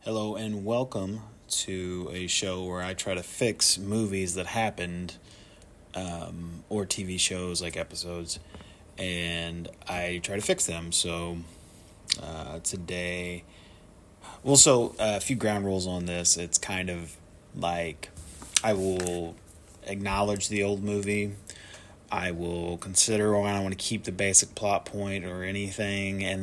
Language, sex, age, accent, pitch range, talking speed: English, male, 30-49, American, 85-105 Hz, 145 wpm